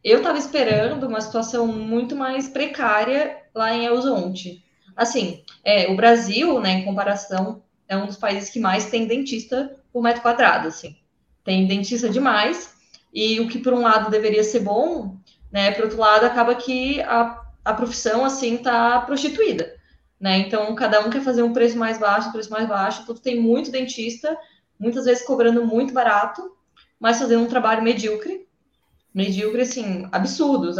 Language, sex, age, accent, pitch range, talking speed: Portuguese, female, 20-39, Brazilian, 215-250 Hz, 165 wpm